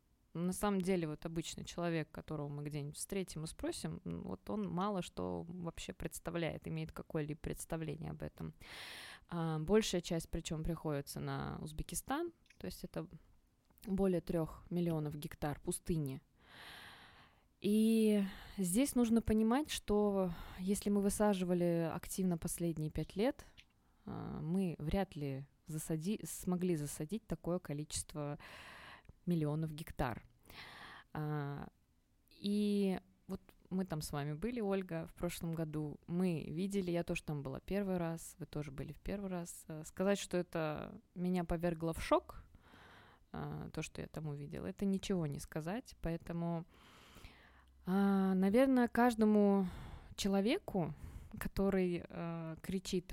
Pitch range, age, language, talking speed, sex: 150-195 Hz, 20-39, Russian, 120 wpm, female